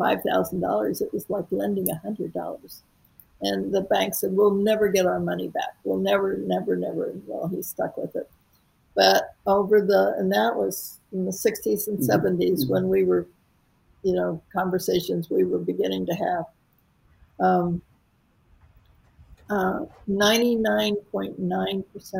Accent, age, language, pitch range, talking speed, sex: American, 60-79, English, 175-205 Hz, 135 wpm, female